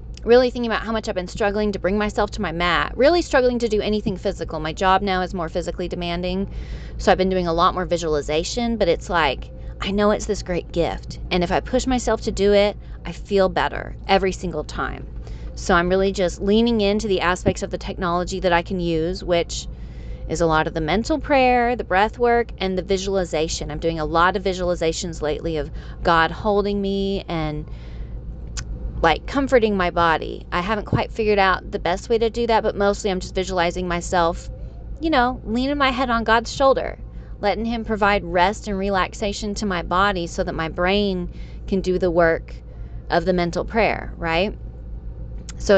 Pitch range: 165-210 Hz